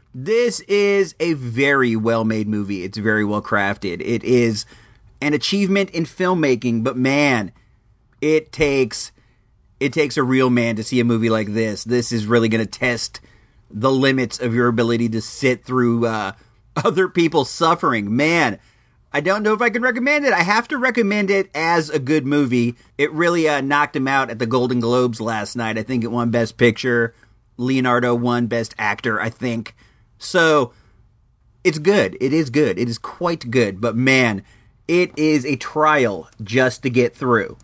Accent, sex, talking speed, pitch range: American, male, 175 wpm, 110-150 Hz